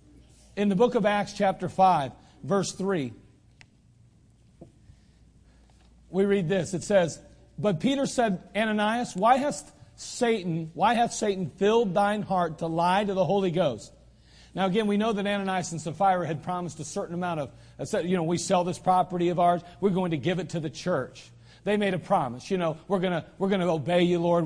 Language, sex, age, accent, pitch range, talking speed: English, male, 40-59, American, 165-205 Hz, 190 wpm